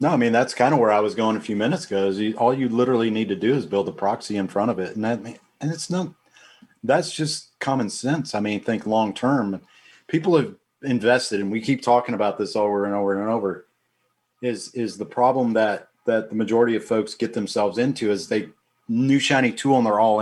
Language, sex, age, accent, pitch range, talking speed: English, male, 40-59, American, 105-130 Hz, 235 wpm